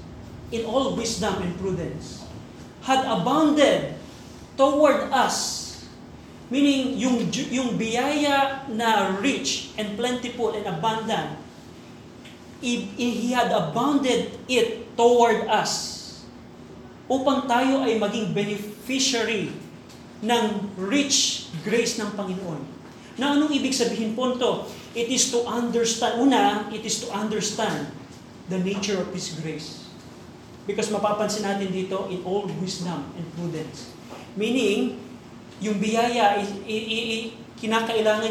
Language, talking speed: Filipino, 110 wpm